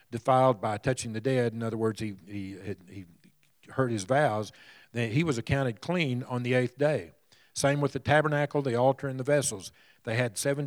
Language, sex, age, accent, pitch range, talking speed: English, male, 50-69, American, 110-135 Hz, 190 wpm